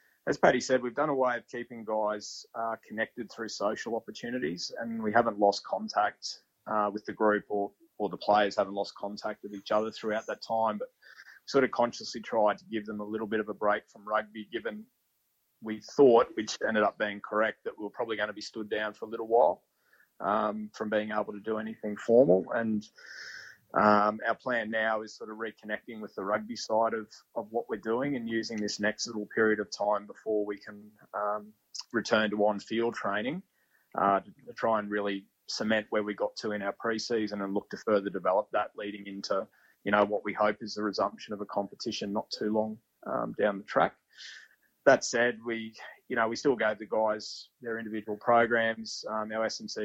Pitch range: 105-115 Hz